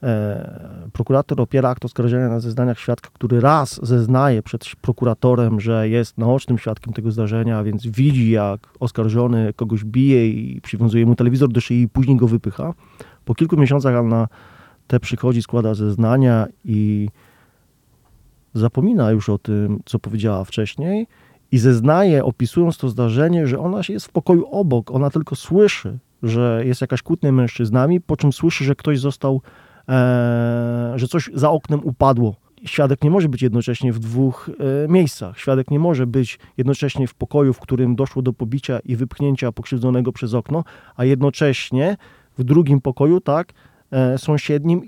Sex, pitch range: male, 115-145 Hz